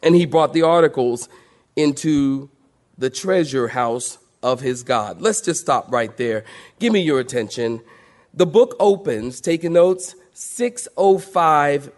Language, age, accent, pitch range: English, 40-59, American, 145-200 Hz